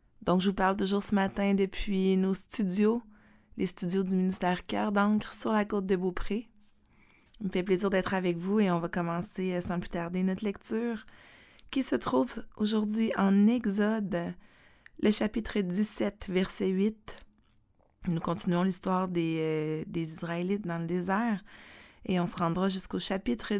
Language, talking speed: French, 160 wpm